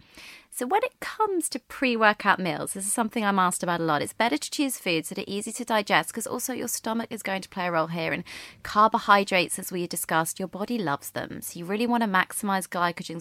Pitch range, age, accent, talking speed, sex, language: 160-225 Hz, 30-49, British, 235 wpm, female, English